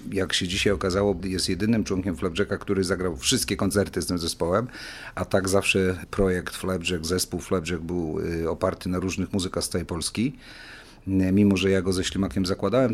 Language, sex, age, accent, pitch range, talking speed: Polish, male, 40-59, native, 90-110 Hz, 170 wpm